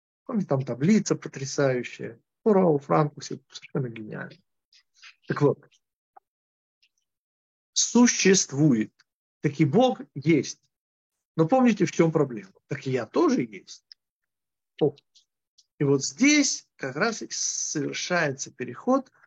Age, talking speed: 50-69, 105 wpm